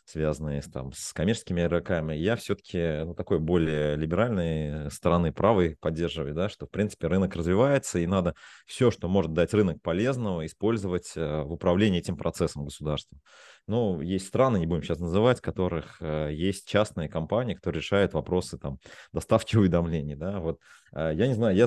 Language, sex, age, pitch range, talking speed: Russian, male, 20-39, 80-105 Hz, 160 wpm